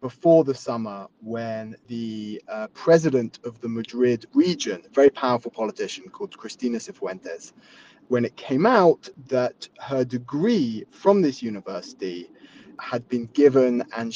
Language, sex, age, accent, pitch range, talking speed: English, male, 20-39, British, 115-165 Hz, 135 wpm